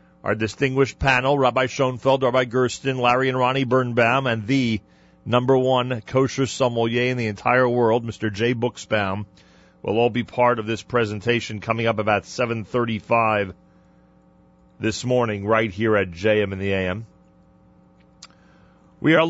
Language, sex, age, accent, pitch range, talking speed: English, male, 40-59, American, 90-135 Hz, 145 wpm